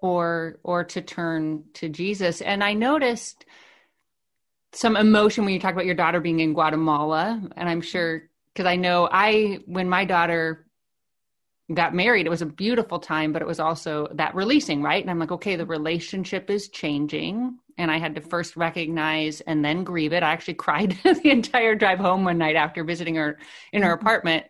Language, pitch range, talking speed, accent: English, 165-220 Hz, 190 wpm, American